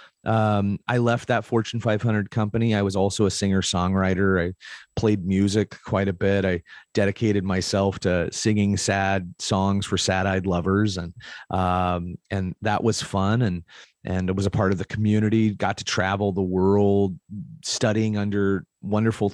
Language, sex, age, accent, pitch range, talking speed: English, male, 30-49, American, 95-110 Hz, 165 wpm